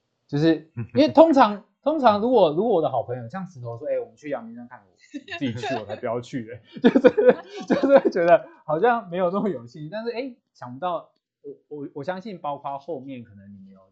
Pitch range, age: 110-170 Hz, 20-39